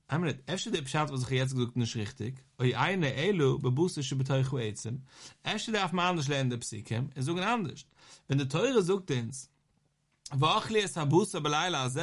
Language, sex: English, male